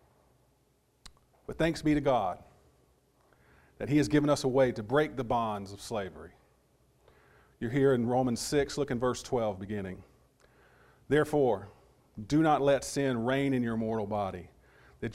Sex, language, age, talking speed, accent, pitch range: male, English, 40-59, 155 wpm, American, 105-140 Hz